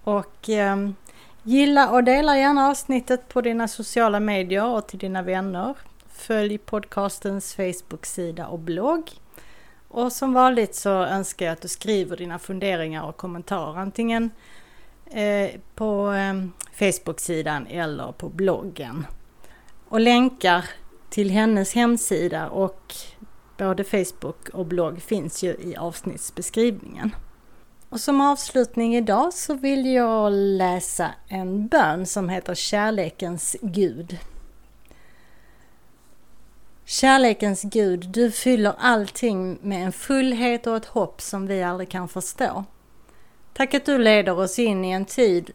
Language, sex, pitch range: Swedish, female, 185-225 Hz